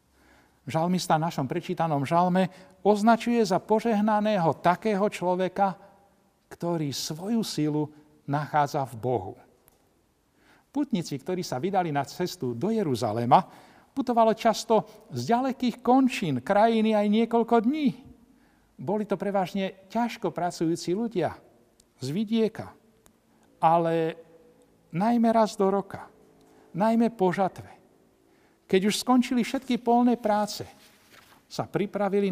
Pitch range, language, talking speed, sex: 165-220 Hz, Slovak, 105 wpm, male